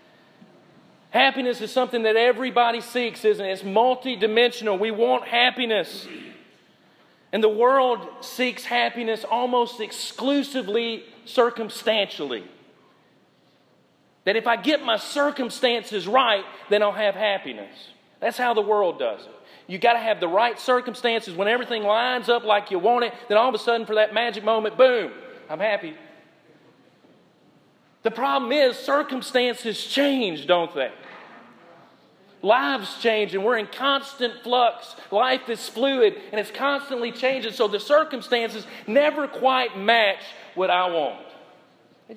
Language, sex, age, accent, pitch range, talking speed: English, male, 40-59, American, 205-250 Hz, 135 wpm